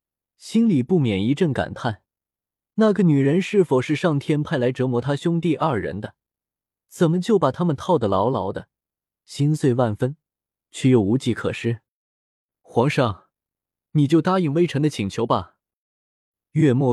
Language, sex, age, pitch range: Chinese, male, 20-39, 110-165 Hz